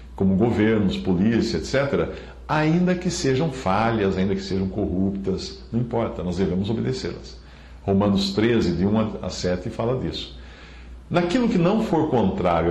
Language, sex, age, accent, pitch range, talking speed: English, male, 60-79, Brazilian, 85-120 Hz, 140 wpm